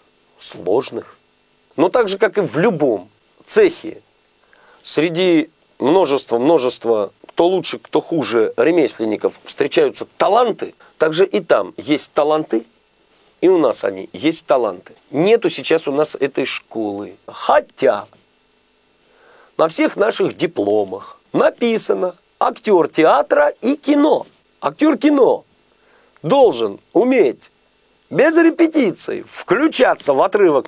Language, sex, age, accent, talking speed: Russian, male, 40-59, native, 105 wpm